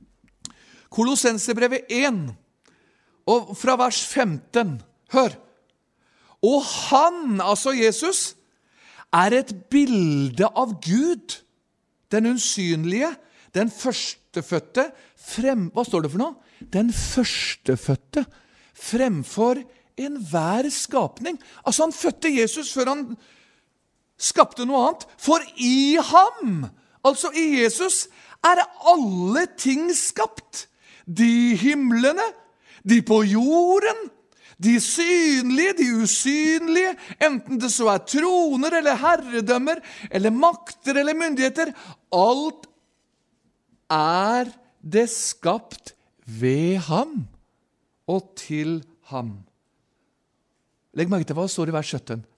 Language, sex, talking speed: French, male, 105 wpm